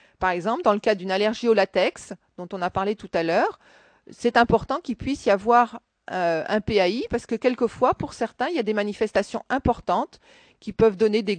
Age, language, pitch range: 40-59, French, 195-255 Hz